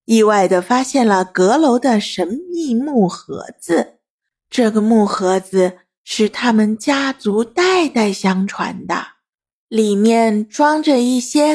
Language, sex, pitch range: Chinese, female, 210-305 Hz